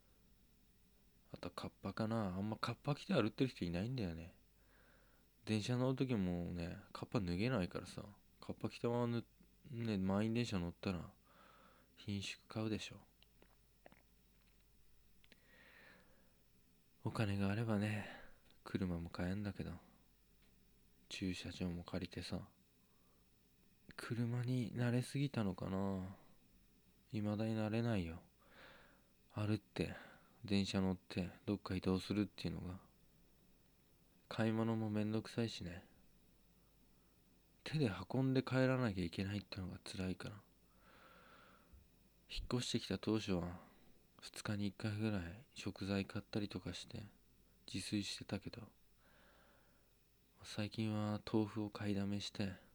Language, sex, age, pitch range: Japanese, male, 20-39, 90-110 Hz